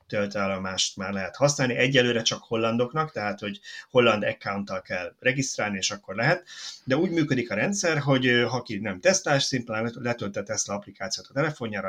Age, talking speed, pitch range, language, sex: 30-49, 165 wpm, 100-125 Hz, Hungarian, male